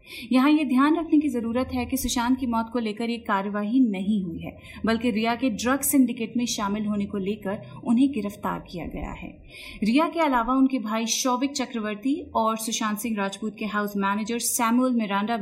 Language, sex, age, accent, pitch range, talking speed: Hindi, female, 30-49, native, 210-255 Hz, 190 wpm